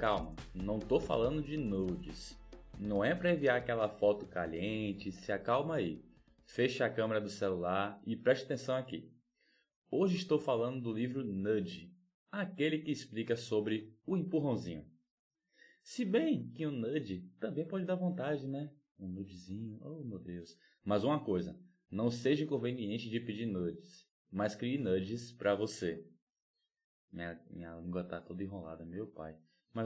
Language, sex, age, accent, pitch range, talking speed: Portuguese, male, 20-39, Brazilian, 100-135 Hz, 155 wpm